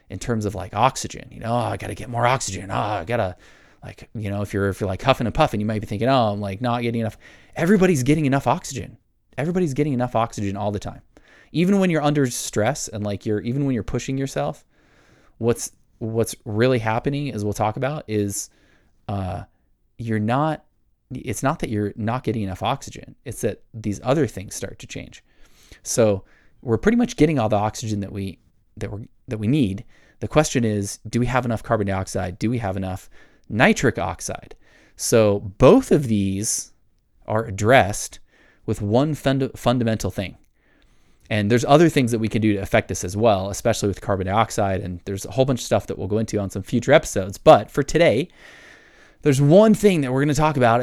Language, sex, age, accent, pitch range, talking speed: English, male, 20-39, American, 100-130 Hz, 210 wpm